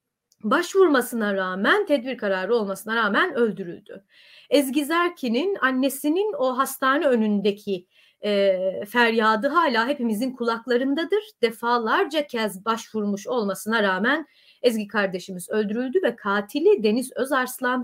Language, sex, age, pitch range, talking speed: Turkish, female, 30-49, 210-305 Hz, 100 wpm